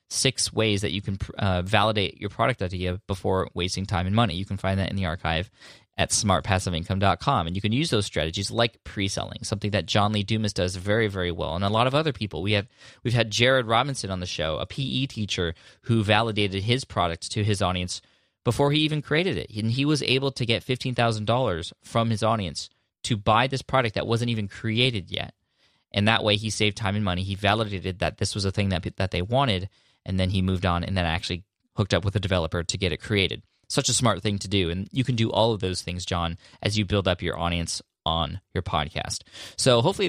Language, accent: English, American